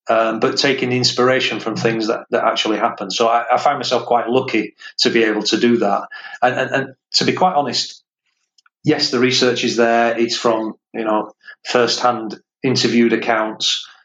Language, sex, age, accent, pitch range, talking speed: English, male, 30-49, British, 110-125 Hz, 180 wpm